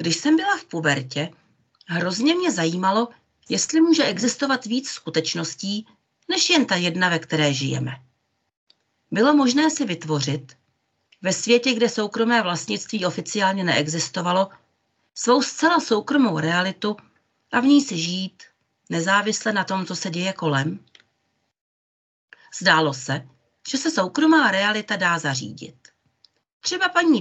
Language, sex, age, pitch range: Czech, female, 40-59, 165-255 Hz